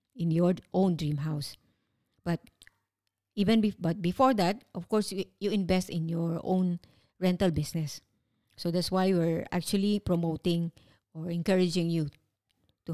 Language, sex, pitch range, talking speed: English, female, 160-190 Hz, 140 wpm